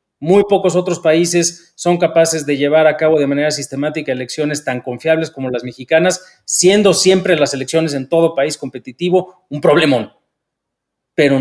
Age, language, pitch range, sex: 40-59, Spanish, 130-175 Hz, male